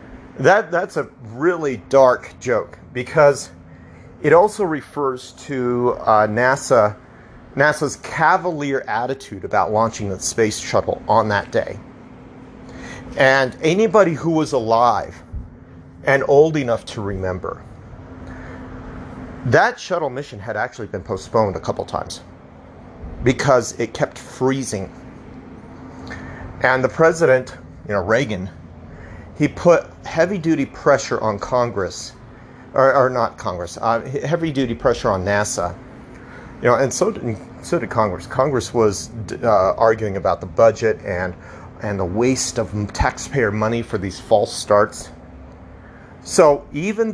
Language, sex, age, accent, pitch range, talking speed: English, male, 40-59, American, 105-140 Hz, 125 wpm